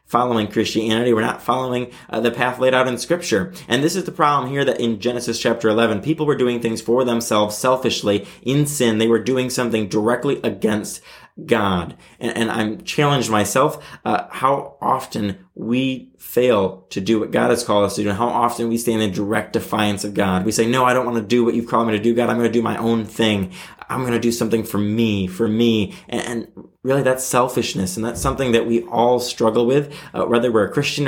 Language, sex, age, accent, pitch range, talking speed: English, male, 20-39, American, 115-135 Hz, 220 wpm